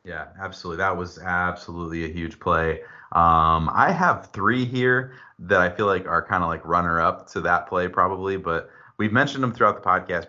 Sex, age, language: male, 30-49, English